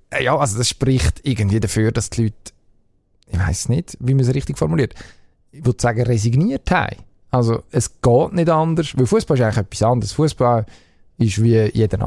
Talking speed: 185 wpm